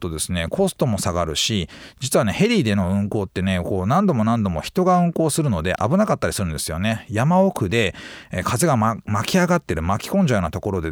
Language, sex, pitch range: Japanese, male, 95-150 Hz